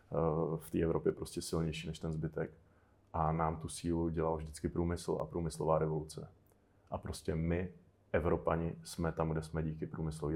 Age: 30-49